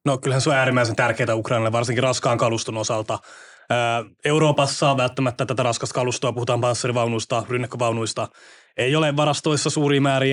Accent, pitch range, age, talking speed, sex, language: Finnish, 120-140 Hz, 20-39, 145 wpm, male, English